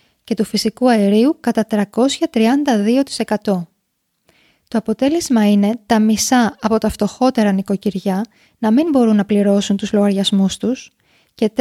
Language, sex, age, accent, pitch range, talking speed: Greek, female, 20-39, native, 205-245 Hz, 125 wpm